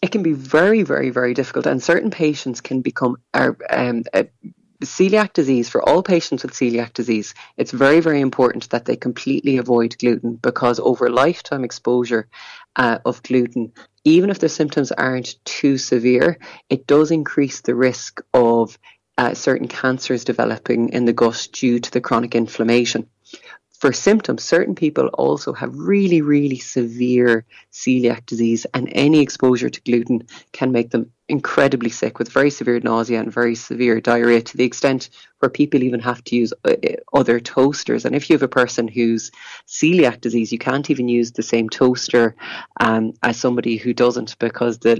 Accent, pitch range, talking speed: Irish, 120-140 Hz, 170 wpm